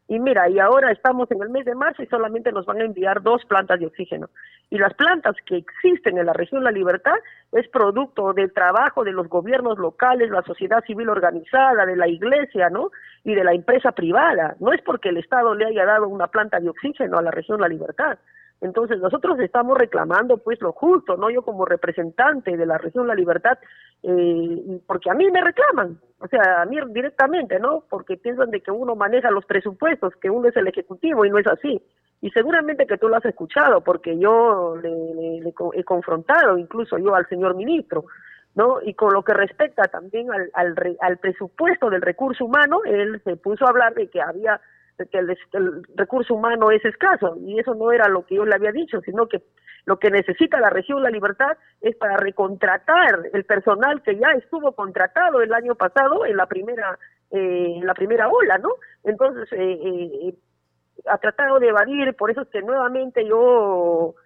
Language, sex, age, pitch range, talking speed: Spanish, female, 40-59, 185-270 Hz, 200 wpm